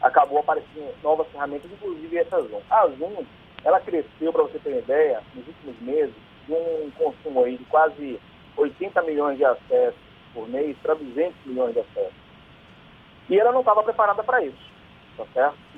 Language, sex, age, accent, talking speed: Portuguese, male, 40-59, Brazilian, 170 wpm